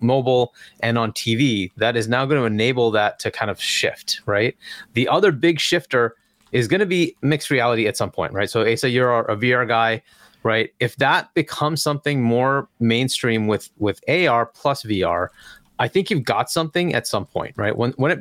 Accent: American